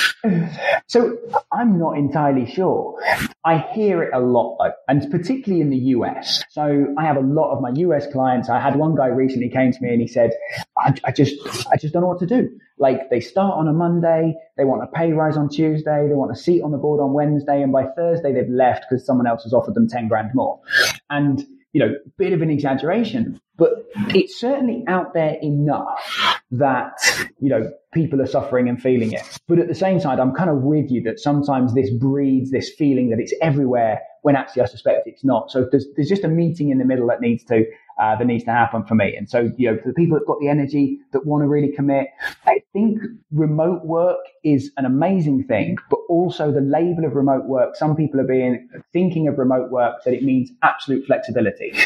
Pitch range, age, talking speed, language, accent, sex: 125-165 Hz, 20-39, 220 wpm, English, British, male